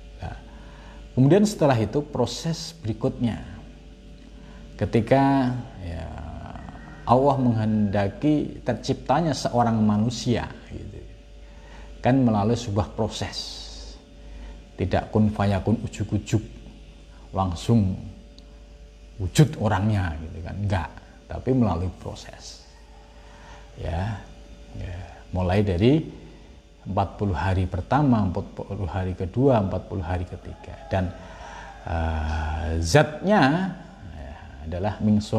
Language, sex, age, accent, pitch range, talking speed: Indonesian, male, 50-69, native, 85-115 Hz, 80 wpm